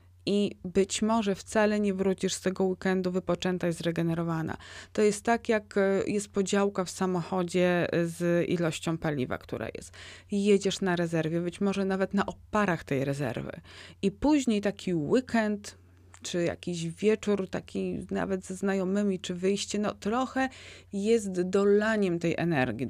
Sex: female